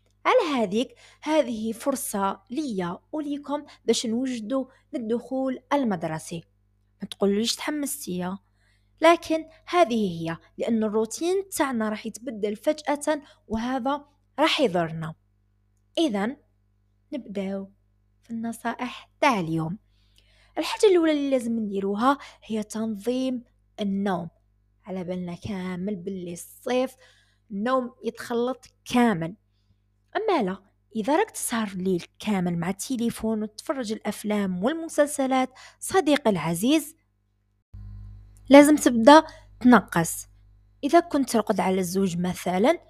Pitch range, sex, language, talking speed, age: 175-265 Hz, female, Arabic, 100 wpm, 20-39